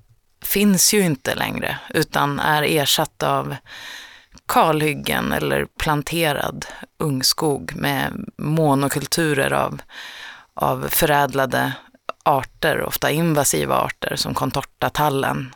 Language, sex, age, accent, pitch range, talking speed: Swedish, female, 30-49, native, 140-165 Hz, 90 wpm